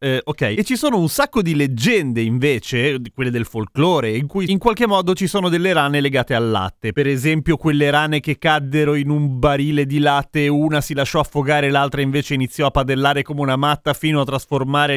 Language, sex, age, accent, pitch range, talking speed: Italian, male, 30-49, native, 140-190 Hz, 210 wpm